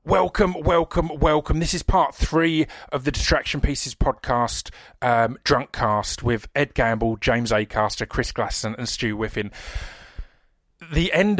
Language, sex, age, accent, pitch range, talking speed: English, male, 30-49, British, 115-155 Hz, 140 wpm